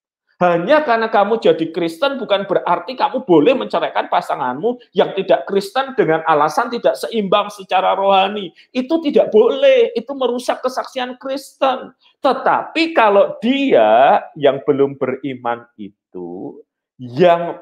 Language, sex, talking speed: Malay, male, 120 wpm